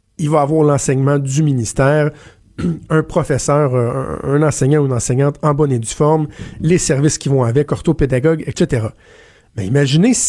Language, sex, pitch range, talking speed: French, male, 135-175 Hz, 155 wpm